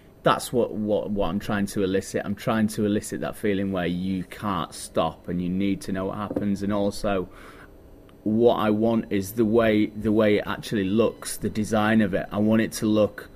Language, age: Finnish, 30-49